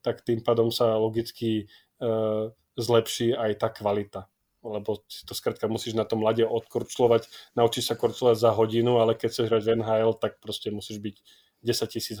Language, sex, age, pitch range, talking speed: Slovak, male, 20-39, 110-120 Hz, 165 wpm